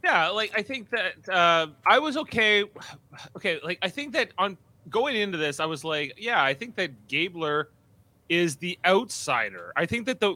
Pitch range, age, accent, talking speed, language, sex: 120-170 Hz, 30-49, American, 190 wpm, English, male